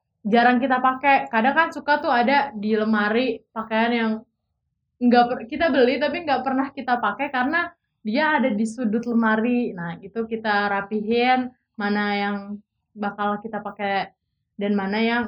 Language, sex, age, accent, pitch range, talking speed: Indonesian, female, 20-39, native, 215-255 Hz, 155 wpm